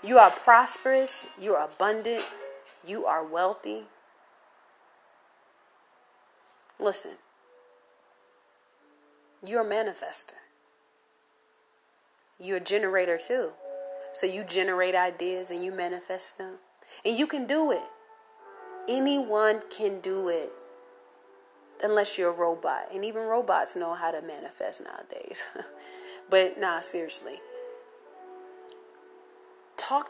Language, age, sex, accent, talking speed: English, 30-49, female, American, 100 wpm